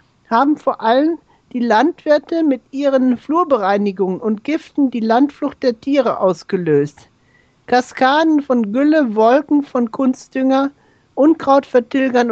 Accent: German